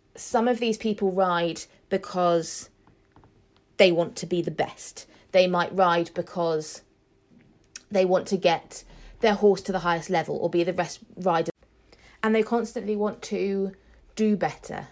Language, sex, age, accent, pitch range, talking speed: English, female, 30-49, British, 180-210 Hz, 155 wpm